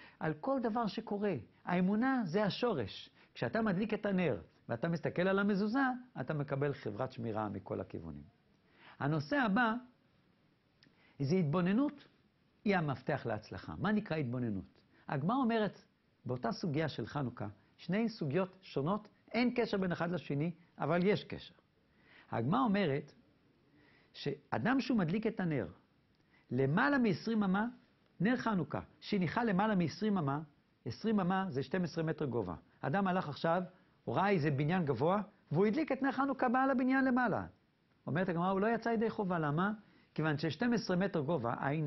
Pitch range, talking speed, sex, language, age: 150-215 Hz, 140 wpm, male, Hebrew, 60-79